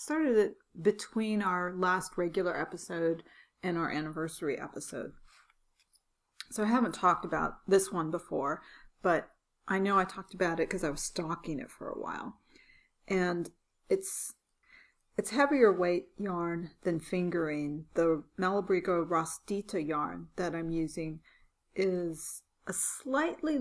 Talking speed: 130 wpm